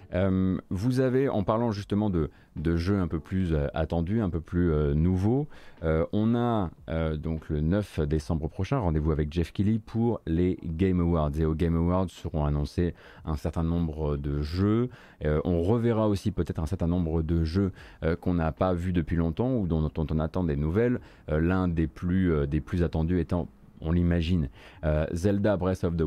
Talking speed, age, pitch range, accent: 200 wpm, 30-49, 80-110 Hz, French